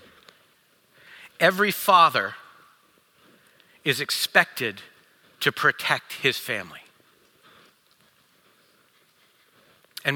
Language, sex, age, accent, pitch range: English, male, 50-69, American, 115-150 Hz